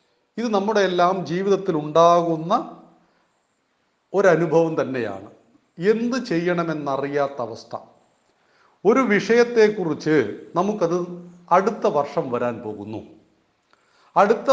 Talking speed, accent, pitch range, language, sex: 75 wpm, native, 145-205 Hz, Malayalam, male